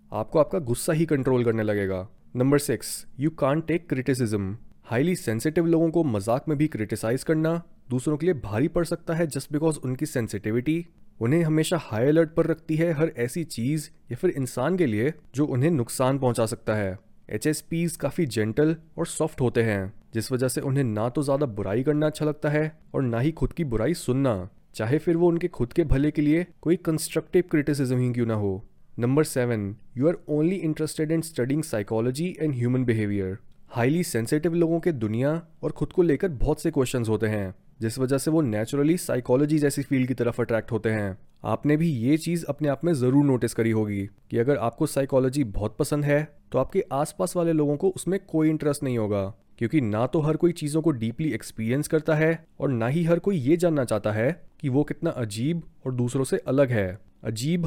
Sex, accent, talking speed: male, native, 200 wpm